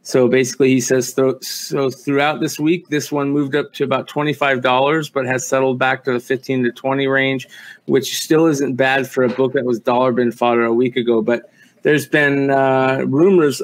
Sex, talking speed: male, 200 wpm